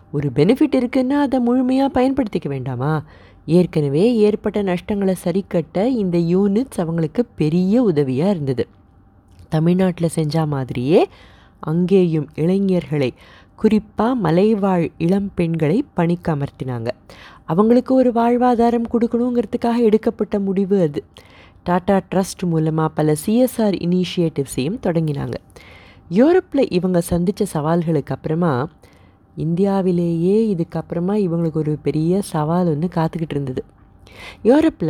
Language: Tamil